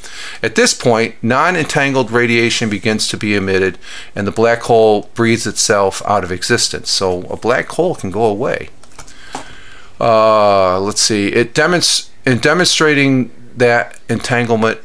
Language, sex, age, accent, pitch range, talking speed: English, male, 50-69, American, 100-125 Hz, 130 wpm